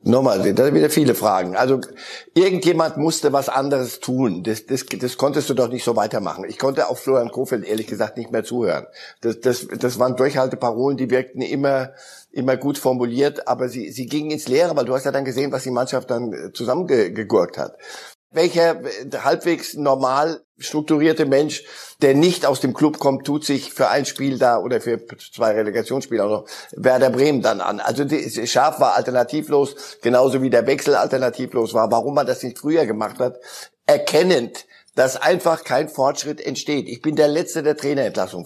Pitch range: 125-150 Hz